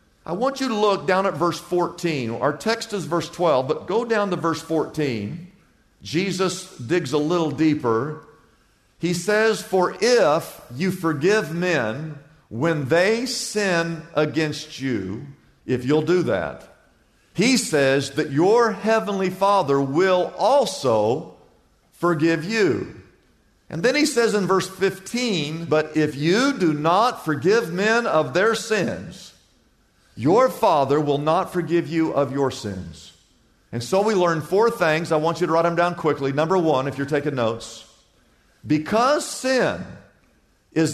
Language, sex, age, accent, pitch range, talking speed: English, male, 50-69, American, 145-200 Hz, 145 wpm